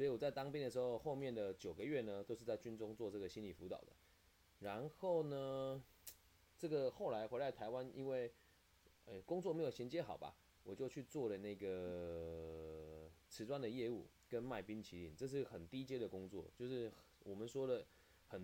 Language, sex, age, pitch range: Chinese, male, 20-39, 85-125 Hz